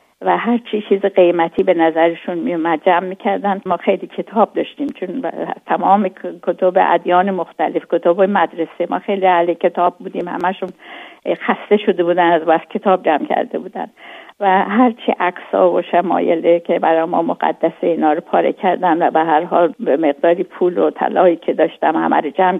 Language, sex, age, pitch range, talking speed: Persian, female, 50-69, 170-200 Hz, 160 wpm